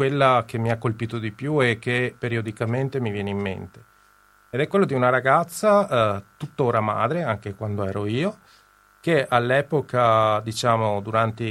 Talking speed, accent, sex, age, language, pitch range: 160 wpm, native, male, 40-59, Italian, 105-125 Hz